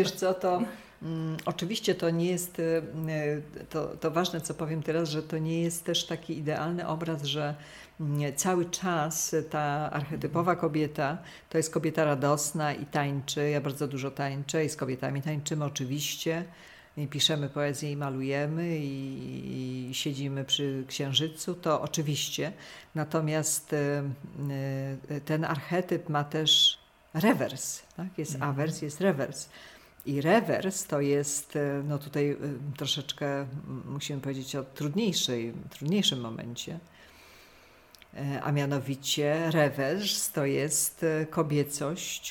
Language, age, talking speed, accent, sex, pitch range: Polish, 50-69, 115 wpm, native, female, 140-165 Hz